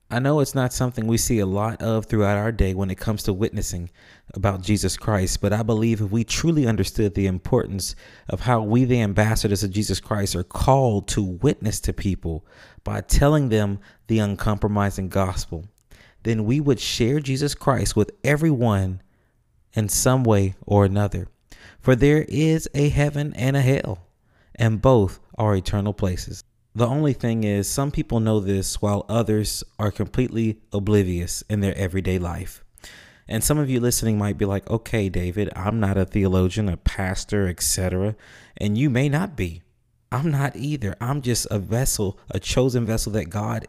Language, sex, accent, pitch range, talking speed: English, male, American, 100-120 Hz, 175 wpm